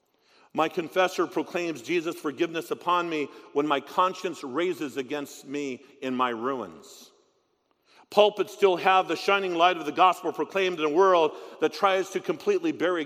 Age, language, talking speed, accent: 50-69, Spanish, 155 wpm, American